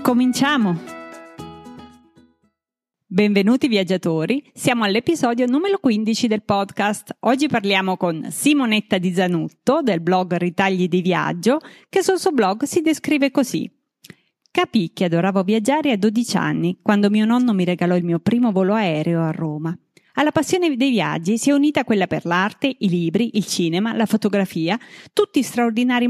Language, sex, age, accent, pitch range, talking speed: Italian, female, 30-49, native, 185-255 Hz, 145 wpm